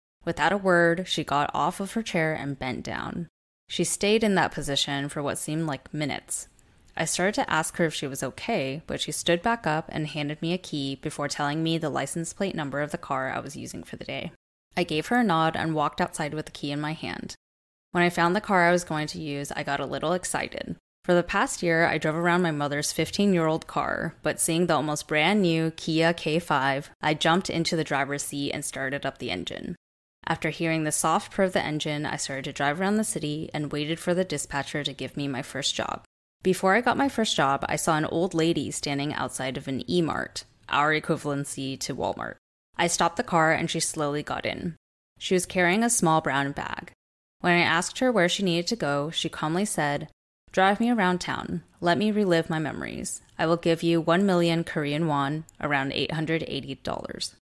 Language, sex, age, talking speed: English, female, 10-29, 220 wpm